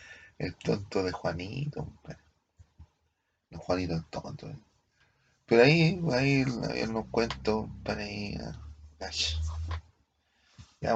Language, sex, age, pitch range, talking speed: Spanish, male, 30-49, 80-110 Hz, 95 wpm